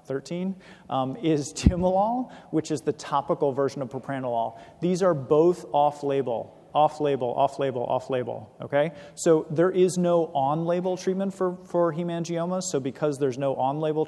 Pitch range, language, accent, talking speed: 135-170 Hz, English, American, 140 wpm